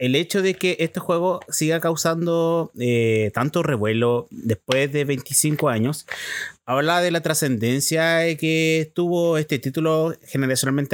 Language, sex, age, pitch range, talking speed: Spanish, male, 30-49, 130-180 Hz, 130 wpm